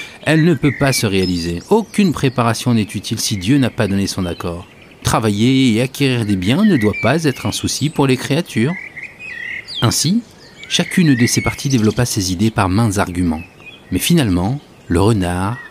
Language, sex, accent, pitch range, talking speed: French, male, French, 95-135 Hz, 175 wpm